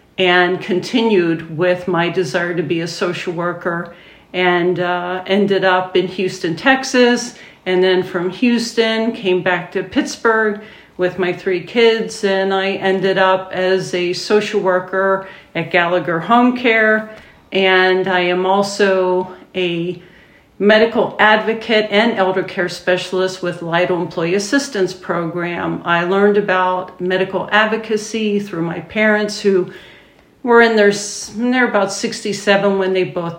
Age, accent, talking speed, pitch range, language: 50-69, American, 135 wpm, 180-205 Hz, English